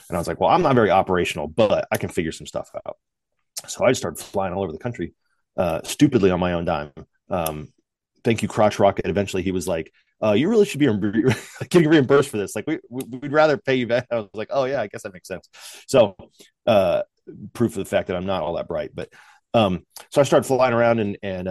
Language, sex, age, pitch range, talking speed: English, male, 30-49, 95-130 Hz, 245 wpm